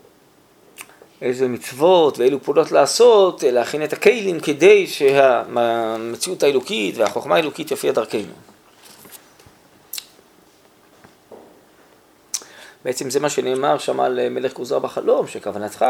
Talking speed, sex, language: 90 wpm, male, Hebrew